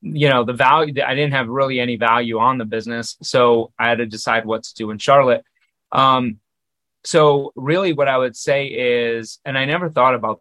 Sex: male